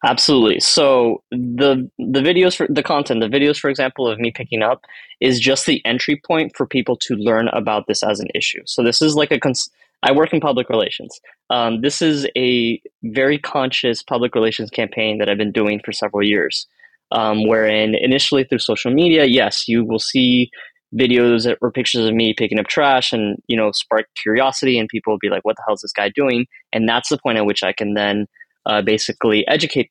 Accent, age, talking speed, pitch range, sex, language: American, 20-39, 210 wpm, 110-135 Hz, male, English